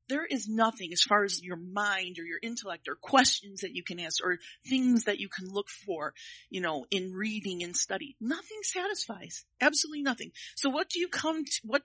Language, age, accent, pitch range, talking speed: English, 40-59, American, 200-270 Hz, 210 wpm